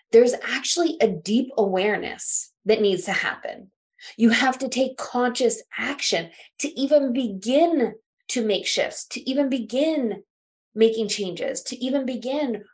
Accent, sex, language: American, female, English